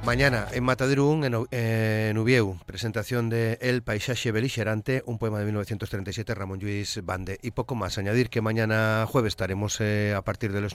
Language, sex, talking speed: Spanish, male, 180 wpm